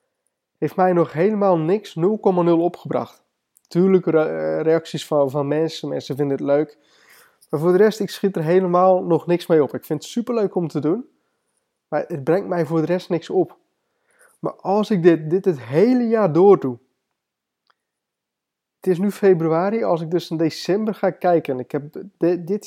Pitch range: 155-205 Hz